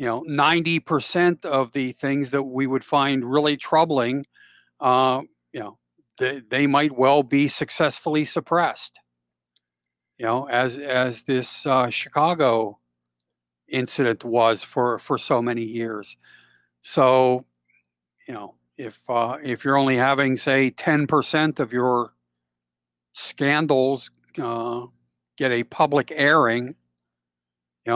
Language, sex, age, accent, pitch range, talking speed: English, male, 50-69, American, 120-150 Hz, 120 wpm